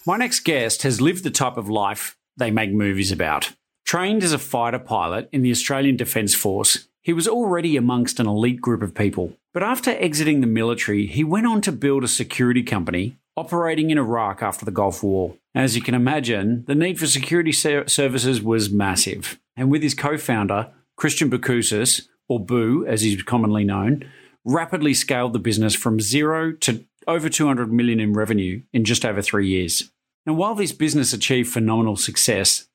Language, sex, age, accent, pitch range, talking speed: English, male, 40-59, Australian, 110-155 Hz, 180 wpm